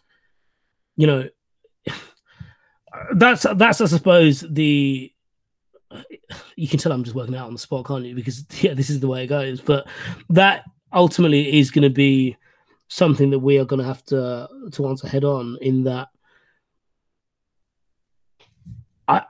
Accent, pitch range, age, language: British, 130-150 Hz, 20-39, English